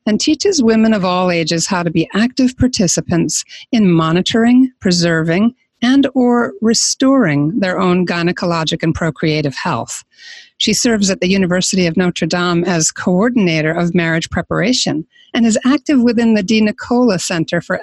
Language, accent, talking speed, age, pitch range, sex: English, American, 150 wpm, 50-69, 180-250 Hz, female